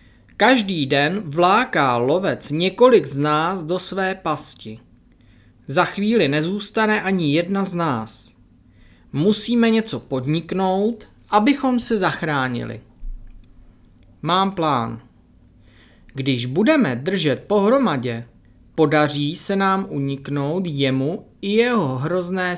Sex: male